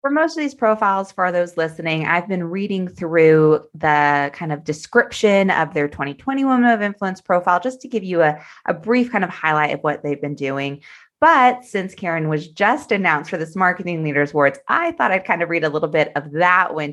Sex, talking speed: female, 215 wpm